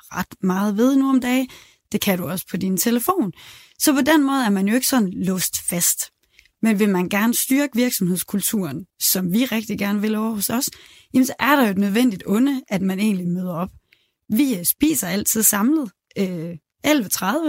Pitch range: 195-245 Hz